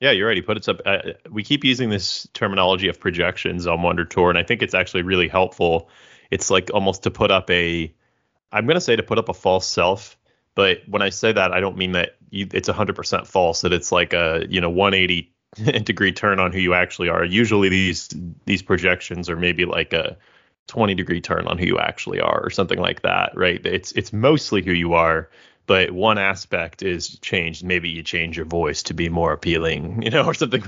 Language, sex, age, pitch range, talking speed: English, male, 20-39, 85-105 Hz, 230 wpm